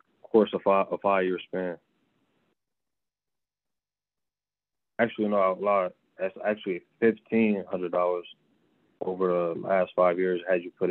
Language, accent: English, American